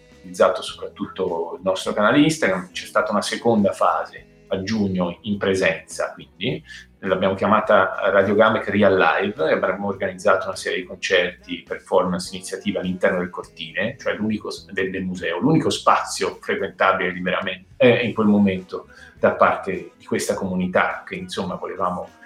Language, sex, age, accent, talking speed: Italian, male, 40-59, native, 140 wpm